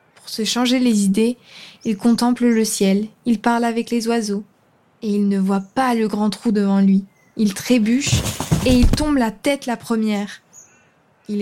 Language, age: French, 20-39